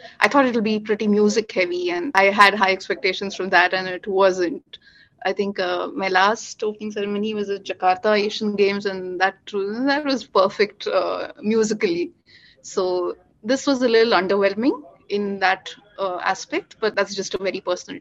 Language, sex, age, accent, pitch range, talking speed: English, female, 30-49, Indian, 195-250 Hz, 175 wpm